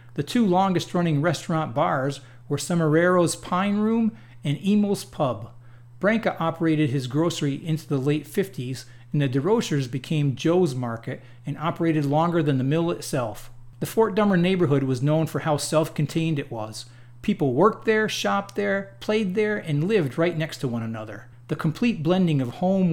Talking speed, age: 165 wpm, 40-59